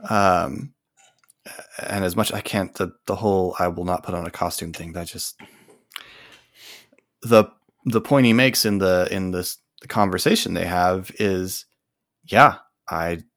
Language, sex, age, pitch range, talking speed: English, male, 30-49, 85-100 Hz, 160 wpm